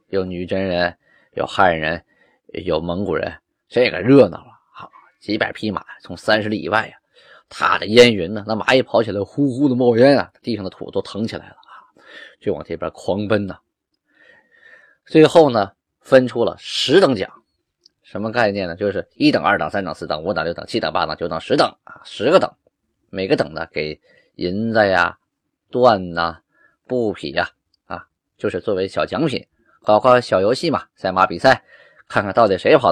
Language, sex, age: Chinese, male, 20-39